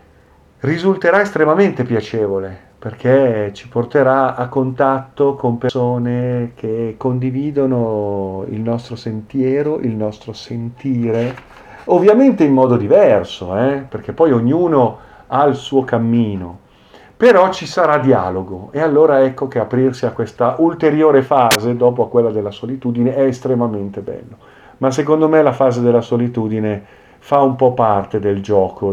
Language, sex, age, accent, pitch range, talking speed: Italian, male, 50-69, native, 110-135 Hz, 130 wpm